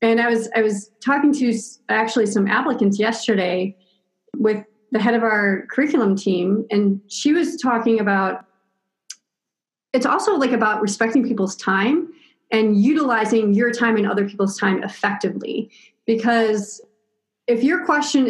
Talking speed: 140 wpm